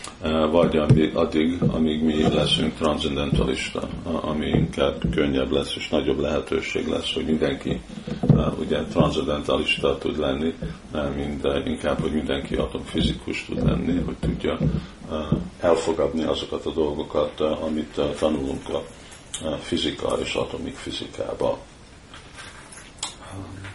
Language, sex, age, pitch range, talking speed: Hungarian, male, 50-69, 80-90 Hz, 100 wpm